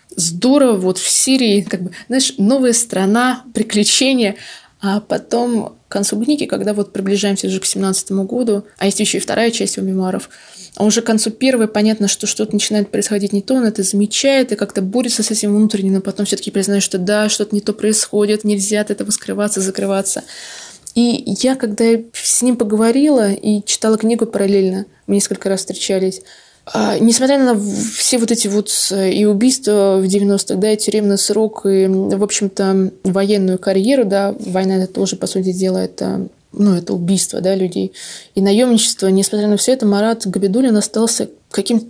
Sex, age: female, 20-39